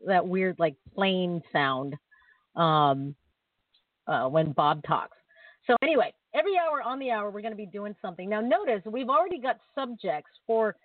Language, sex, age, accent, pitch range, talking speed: English, female, 40-59, American, 180-240 Hz, 165 wpm